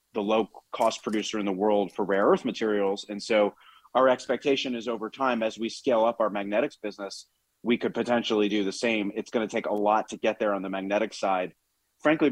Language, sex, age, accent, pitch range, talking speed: English, male, 30-49, American, 100-115 Hz, 215 wpm